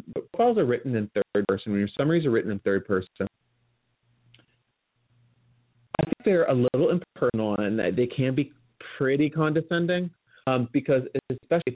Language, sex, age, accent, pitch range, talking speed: English, male, 30-49, American, 110-165 Hz, 150 wpm